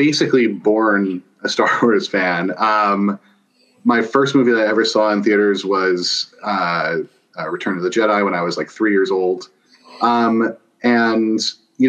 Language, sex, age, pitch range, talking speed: English, male, 30-49, 95-115 Hz, 160 wpm